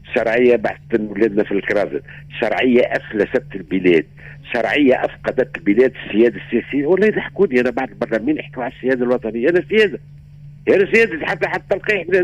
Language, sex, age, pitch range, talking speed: Arabic, male, 50-69, 140-195 Hz, 140 wpm